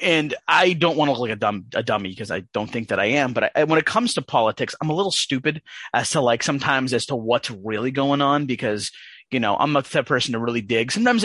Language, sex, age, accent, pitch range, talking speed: English, male, 30-49, American, 115-170 Hz, 275 wpm